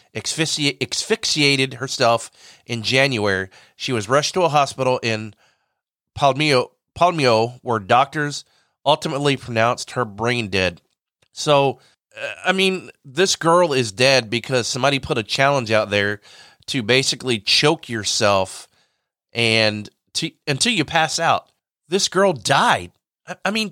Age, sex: 30-49, male